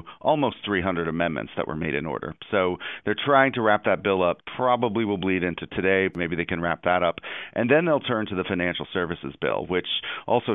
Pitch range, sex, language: 85-95 Hz, male, English